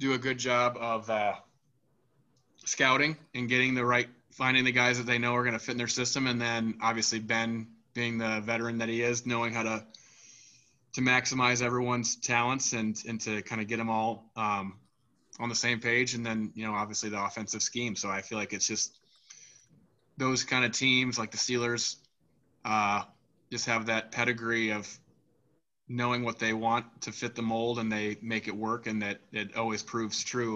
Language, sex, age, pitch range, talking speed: English, male, 20-39, 110-125 Hz, 195 wpm